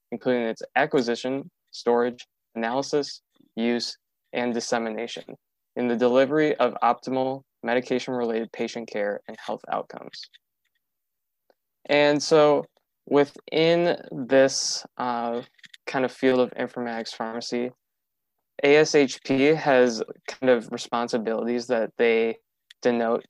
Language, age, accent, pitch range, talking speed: English, 20-39, American, 115-135 Hz, 100 wpm